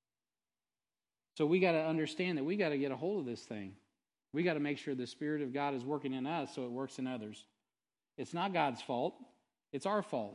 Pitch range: 120-145 Hz